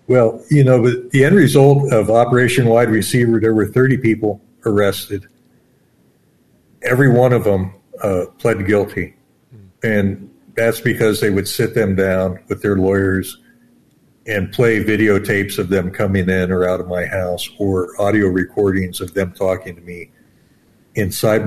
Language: English